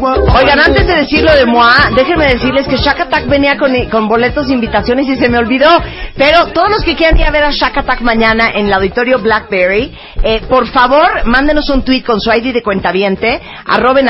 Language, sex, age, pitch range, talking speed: Spanish, female, 40-59, 185-250 Hz, 210 wpm